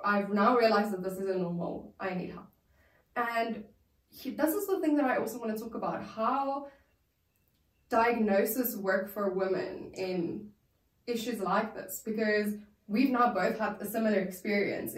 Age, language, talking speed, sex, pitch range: 10-29, English, 160 wpm, female, 195-235 Hz